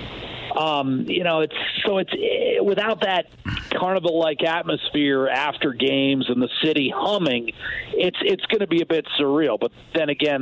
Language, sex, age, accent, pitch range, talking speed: English, male, 50-69, American, 130-160 Hz, 155 wpm